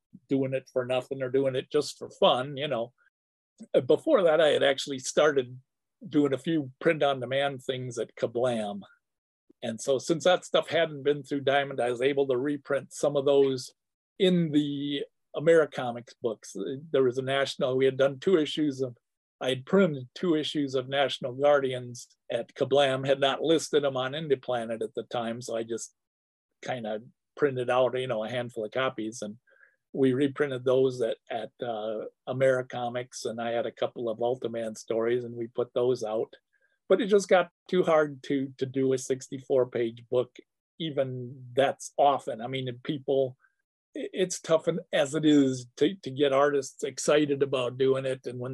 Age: 50-69